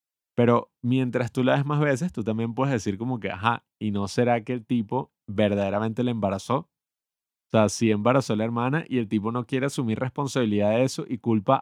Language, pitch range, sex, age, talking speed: Spanish, 105-125 Hz, male, 30-49, 210 wpm